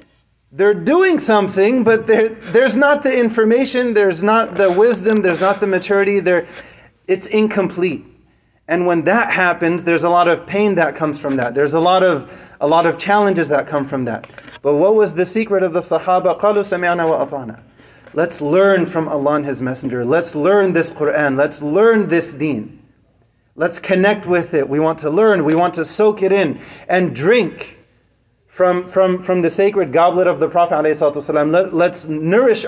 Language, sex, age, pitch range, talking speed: English, male, 30-49, 145-190 Hz, 175 wpm